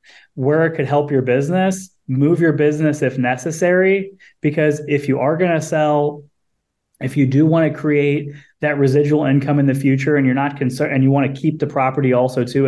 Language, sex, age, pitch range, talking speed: English, male, 20-39, 135-165 Hz, 205 wpm